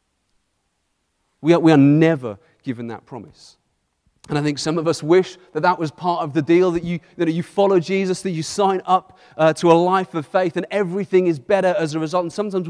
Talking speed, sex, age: 215 wpm, male, 40-59